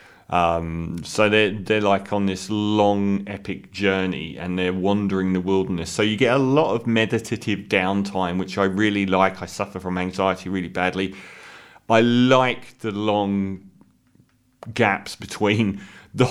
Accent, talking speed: British, 145 wpm